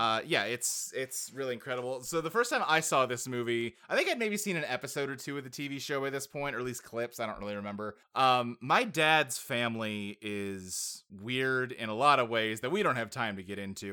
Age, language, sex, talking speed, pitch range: 20-39, English, male, 245 wpm, 125-165 Hz